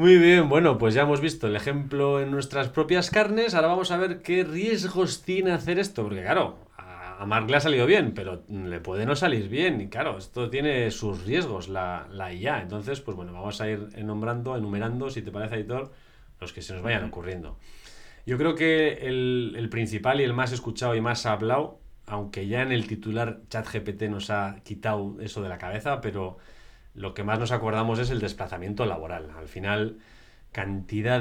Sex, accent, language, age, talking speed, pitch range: male, Spanish, Spanish, 30-49, 195 wpm, 100-130 Hz